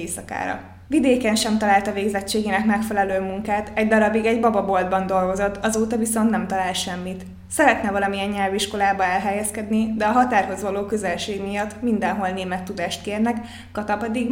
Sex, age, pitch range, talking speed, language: female, 20-39, 190-225 Hz, 130 wpm, Hungarian